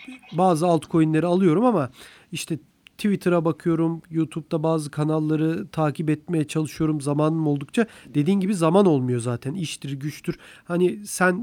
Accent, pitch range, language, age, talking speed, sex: native, 155-200 Hz, Turkish, 40-59, 125 wpm, male